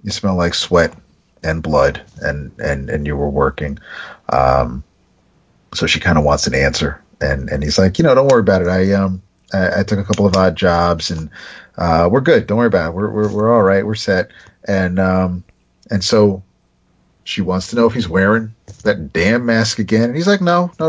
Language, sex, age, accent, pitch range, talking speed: English, male, 40-59, American, 80-110 Hz, 215 wpm